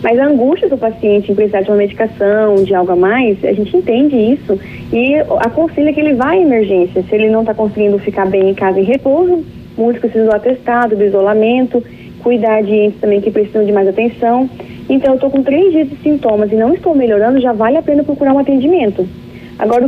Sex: female